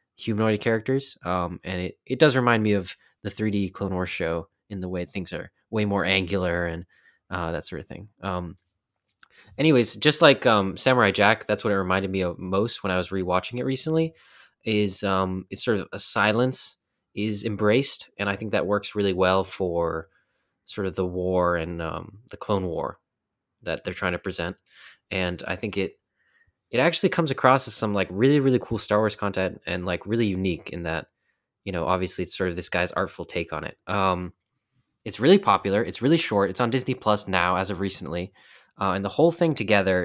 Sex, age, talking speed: male, 20-39, 205 wpm